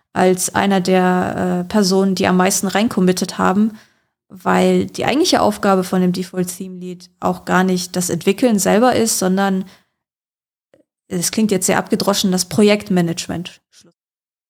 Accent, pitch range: German, 180-215 Hz